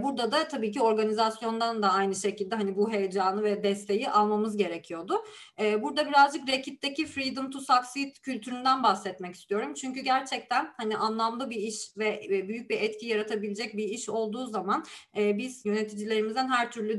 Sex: female